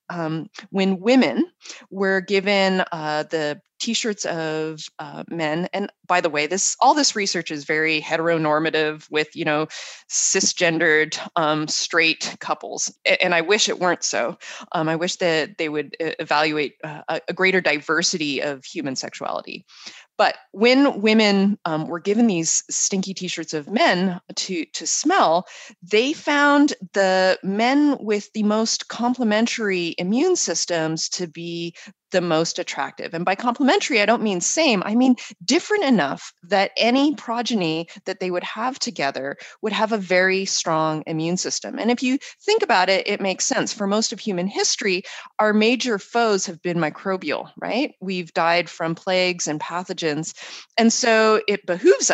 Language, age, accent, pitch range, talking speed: English, 20-39, American, 165-225 Hz, 155 wpm